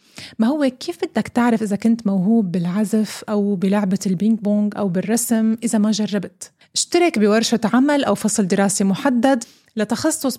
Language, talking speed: Arabic, 150 wpm